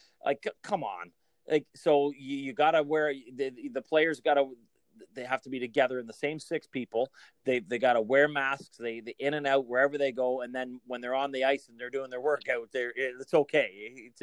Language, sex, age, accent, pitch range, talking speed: English, male, 30-49, American, 130-160 Hz, 230 wpm